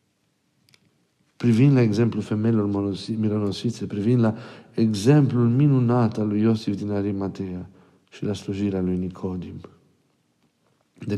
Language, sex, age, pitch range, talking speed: Romanian, male, 50-69, 100-120 Hz, 105 wpm